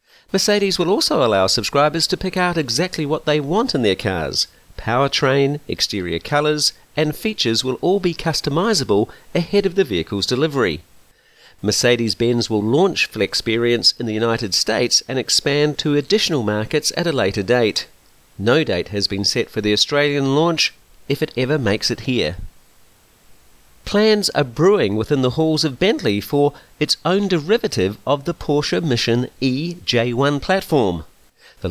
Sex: male